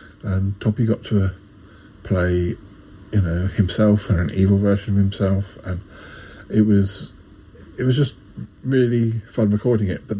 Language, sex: English, male